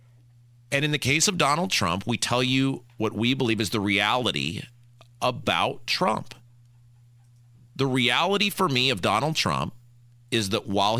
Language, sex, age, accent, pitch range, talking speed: English, male, 40-59, American, 110-140 Hz, 155 wpm